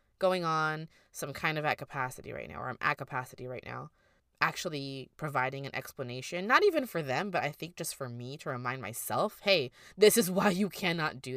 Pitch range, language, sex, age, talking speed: 135-185 Hz, English, female, 20-39, 205 wpm